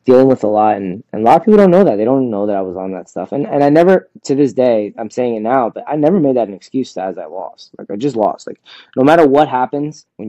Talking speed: 310 wpm